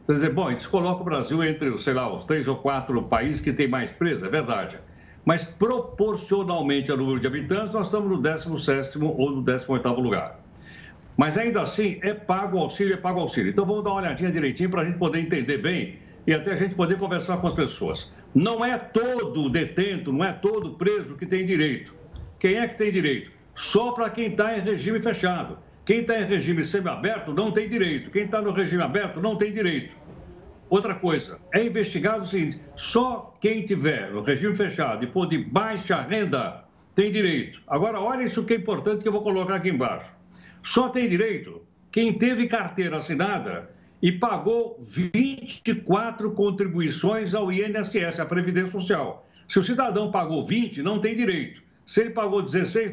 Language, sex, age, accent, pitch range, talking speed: Portuguese, male, 60-79, Brazilian, 165-215 Hz, 185 wpm